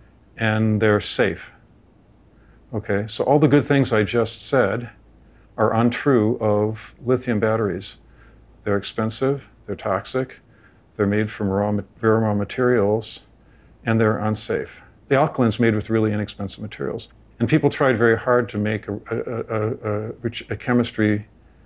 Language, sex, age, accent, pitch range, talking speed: English, male, 50-69, American, 105-120 Hz, 145 wpm